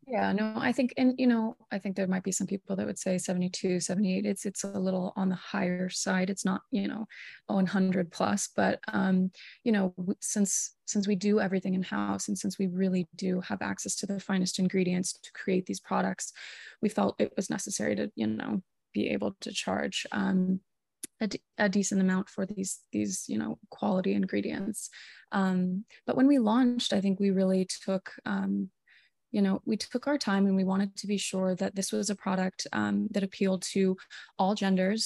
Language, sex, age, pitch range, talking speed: English, female, 20-39, 185-205 Hz, 200 wpm